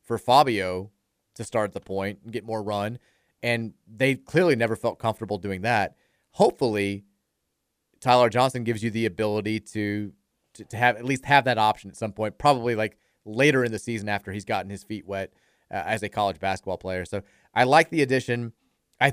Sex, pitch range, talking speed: male, 105-130 Hz, 190 wpm